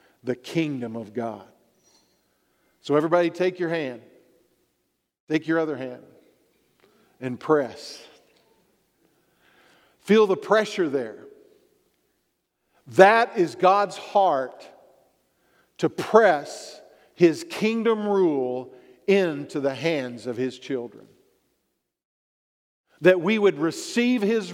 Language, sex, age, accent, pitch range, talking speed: English, male, 50-69, American, 150-215 Hz, 95 wpm